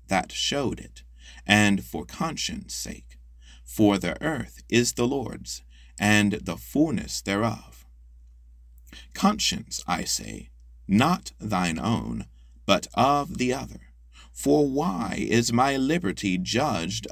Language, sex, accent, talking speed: English, male, American, 115 wpm